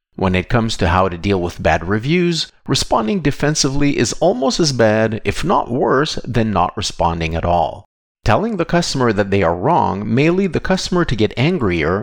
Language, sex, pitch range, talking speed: English, male, 95-140 Hz, 190 wpm